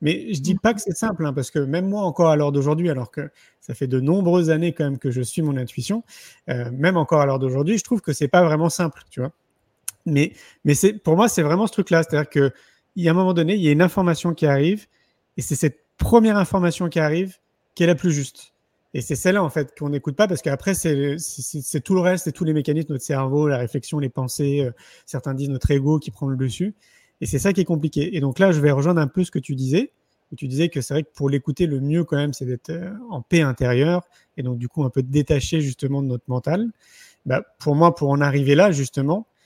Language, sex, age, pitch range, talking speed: French, male, 30-49, 140-180 Hz, 265 wpm